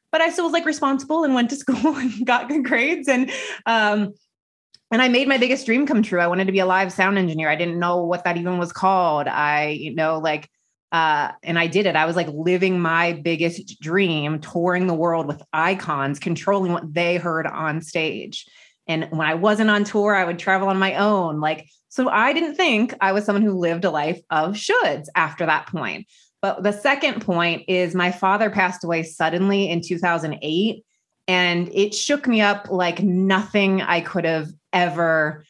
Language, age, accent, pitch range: English, 20-39, American, 160-200 Hz